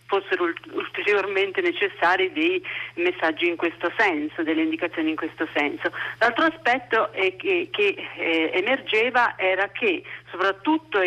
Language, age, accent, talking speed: Italian, 40-59, native, 115 wpm